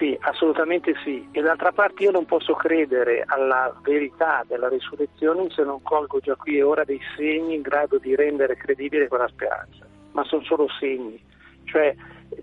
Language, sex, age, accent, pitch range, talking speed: Italian, male, 50-69, native, 145-180 Hz, 170 wpm